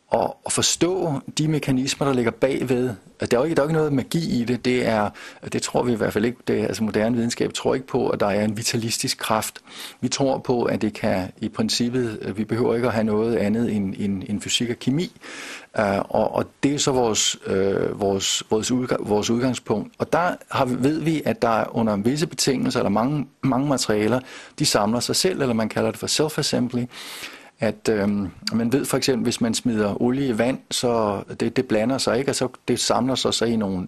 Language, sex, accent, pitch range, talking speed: Danish, male, native, 110-130 Hz, 215 wpm